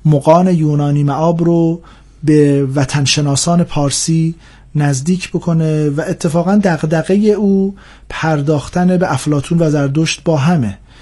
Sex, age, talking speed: male, 40-59, 110 wpm